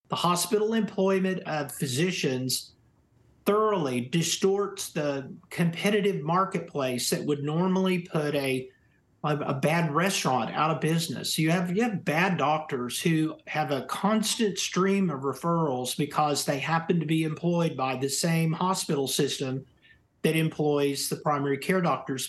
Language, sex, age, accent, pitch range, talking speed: English, male, 50-69, American, 145-180 Hz, 135 wpm